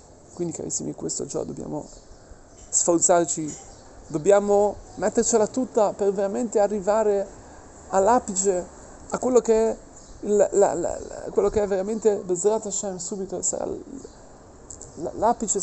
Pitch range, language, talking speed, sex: 165-210 Hz, Italian, 90 wpm, male